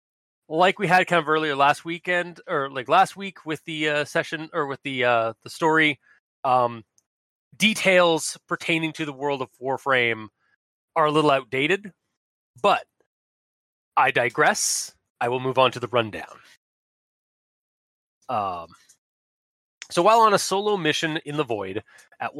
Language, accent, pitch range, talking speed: English, American, 135-170 Hz, 145 wpm